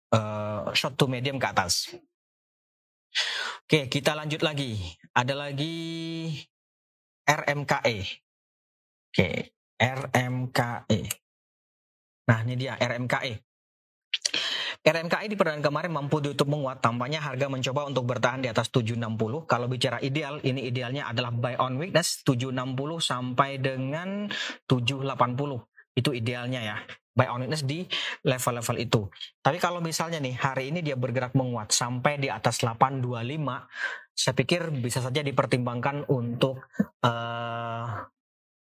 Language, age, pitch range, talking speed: Indonesian, 30-49, 120-150 Hz, 120 wpm